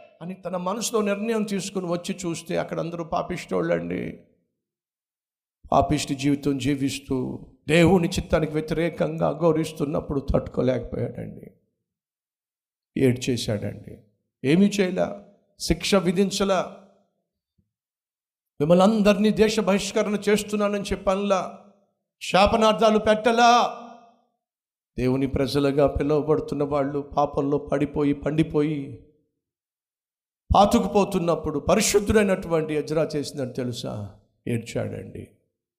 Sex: male